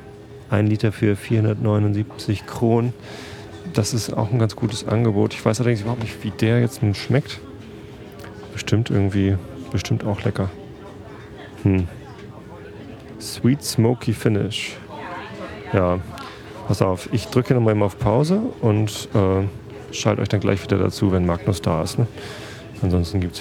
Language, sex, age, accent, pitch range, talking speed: German, male, 30-49, German, 100-110 Hz, 145 wpm